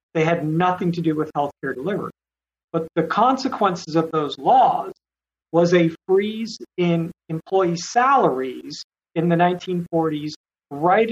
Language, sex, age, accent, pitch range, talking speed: English, male, 50-69, American, 160-190 Hz, 135 wpm